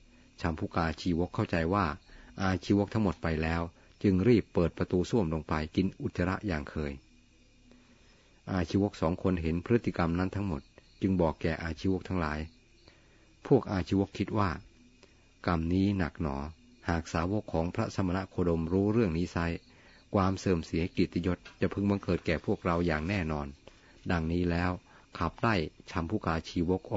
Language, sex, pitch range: Thai, male, 80-100 Hz